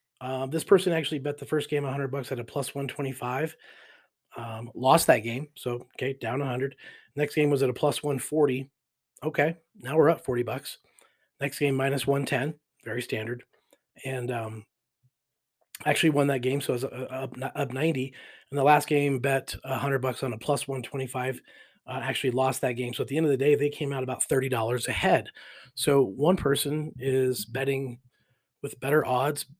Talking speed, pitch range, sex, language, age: 180 wpm, 130-145 Hz, male, English, 30-49